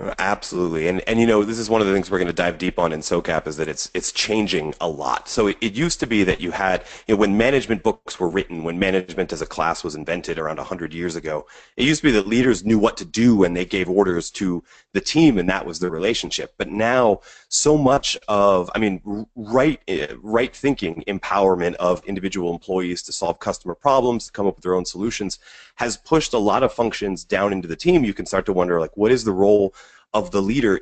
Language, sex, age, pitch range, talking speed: English, male, 30-49, 90-115 Hz, 240 wpm